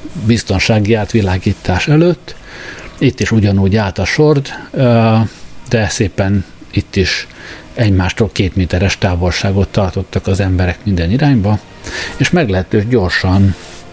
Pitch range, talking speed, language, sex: 95-115 Hz, 105 wpm, Hungarian, male